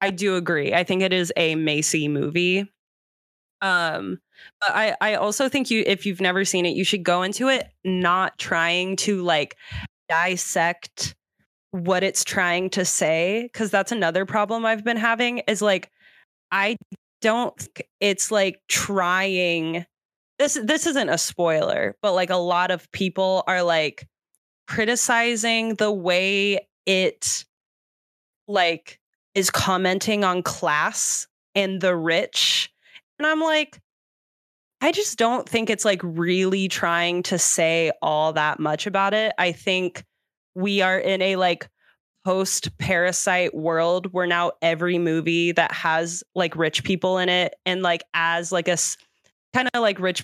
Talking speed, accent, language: 150 wpm, American, English